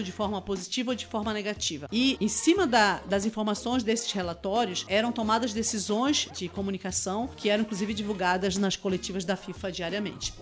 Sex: female